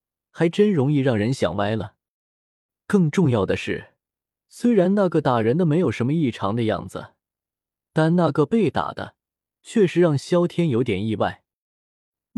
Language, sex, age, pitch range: Chinese, male, 20-39, 110-175 Hz